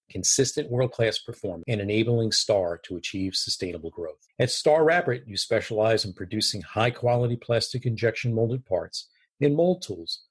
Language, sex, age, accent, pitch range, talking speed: English, male, 40-59, American, 105-130 Hz, 155 wpm